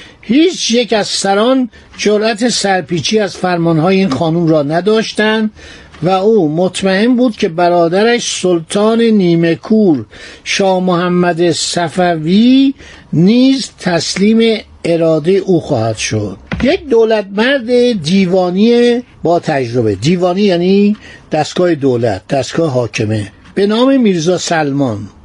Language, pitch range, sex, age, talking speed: Persian, 160-215 Hz, male, 60-79, 110 wpm